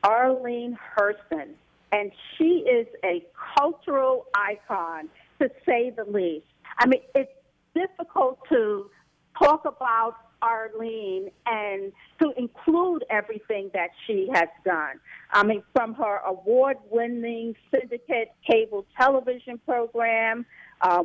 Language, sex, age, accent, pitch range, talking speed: English, female, 50-69, American, 200-260 Hz, 110 wpm